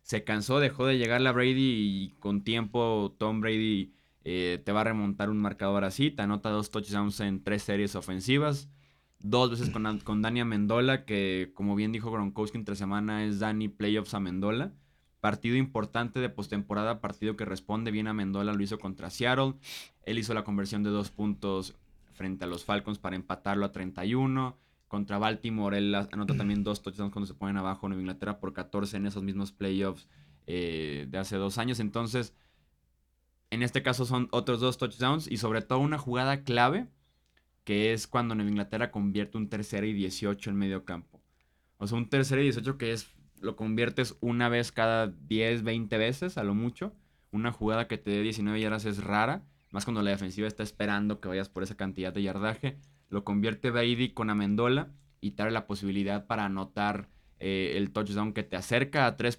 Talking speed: 190 wpm